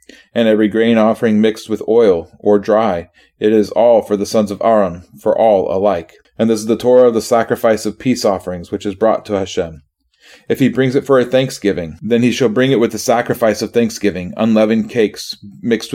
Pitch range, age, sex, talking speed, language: 100-115 Hz, 30-49, male, 210 wpm, English